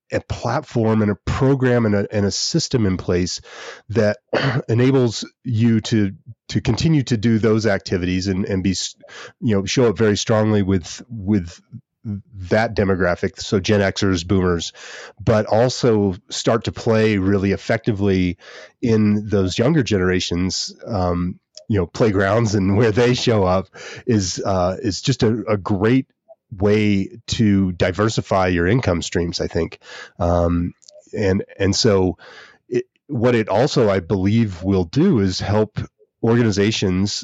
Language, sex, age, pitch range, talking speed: English, male, 30-49, 95-115 Hz, 145 wpm